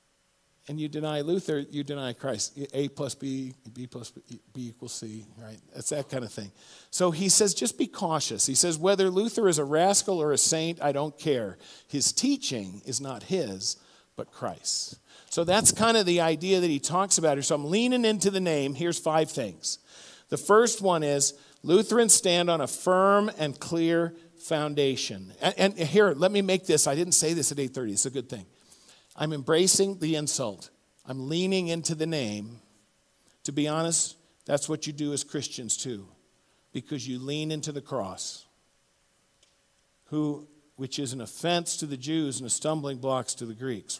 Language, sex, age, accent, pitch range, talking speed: English, male, 50-69, American, 130-170 Hz, 185 wpm